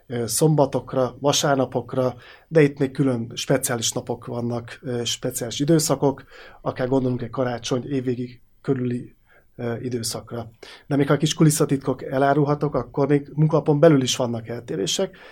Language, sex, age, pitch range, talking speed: Hungarian, male, 30-49, 130-150 Hz, 125 wpm